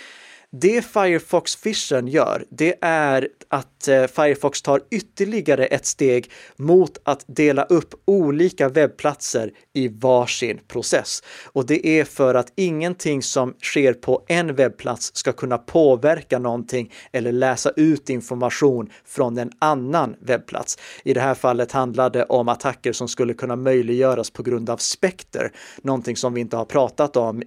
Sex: male